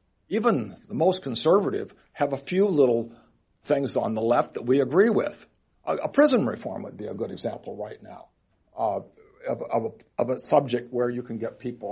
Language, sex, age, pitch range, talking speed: English, male, 60-79, 120-155 Hz, 195 wpm